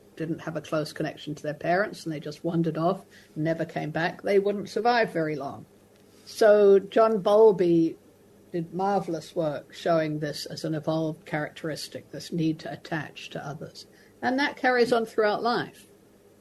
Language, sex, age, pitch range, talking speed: English, female, 60-79, 160-220 Hz, 165 wpm